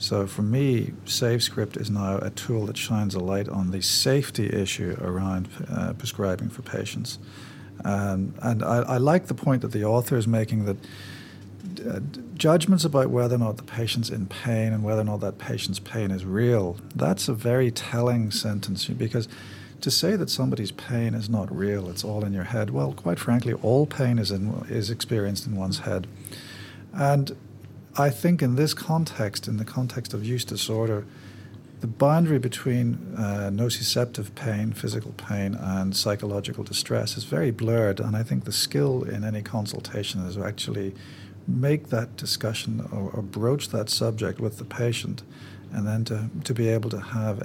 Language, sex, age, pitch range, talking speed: English, male, 50-69, 100-125 Hz, 175 wpm